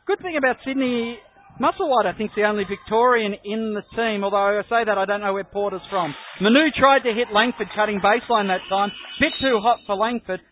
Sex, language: male, English